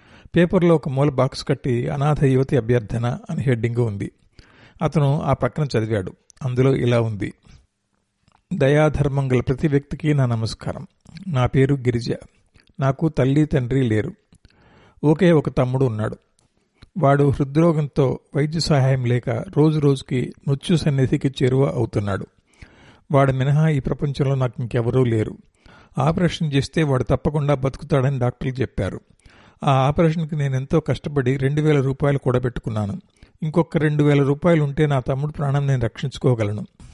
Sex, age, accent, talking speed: male, 50-69, native, 120 wpm